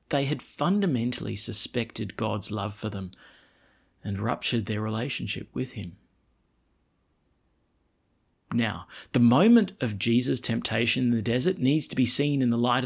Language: English